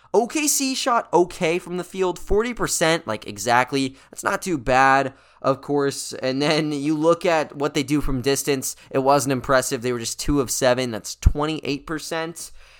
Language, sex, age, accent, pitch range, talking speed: English, male, 20-39, American, 135-180 Hz, 170 wpm